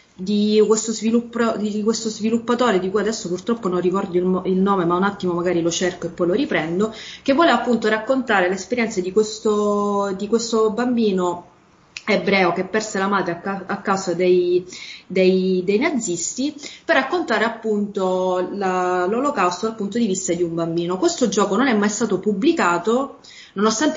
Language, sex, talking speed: Italian, female, 150 wpm